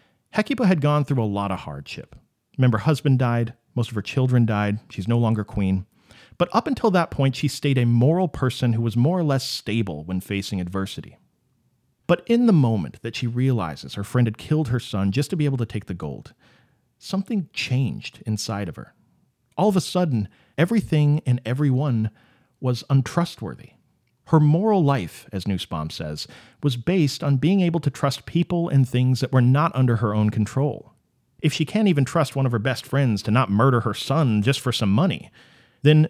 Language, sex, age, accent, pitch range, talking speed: English, male, 40-59, American, 110-150 Hz, 195 wpm